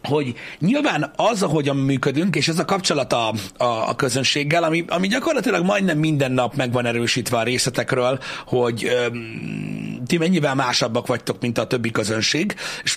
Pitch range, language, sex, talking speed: 130-175 Hz, Hungarian, male, 150 wpm